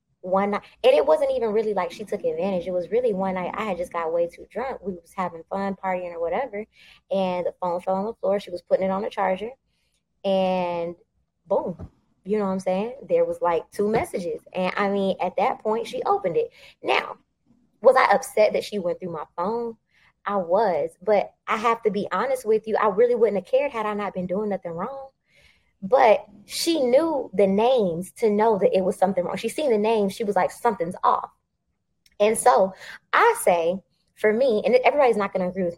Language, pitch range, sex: English, 185-235 Hz, female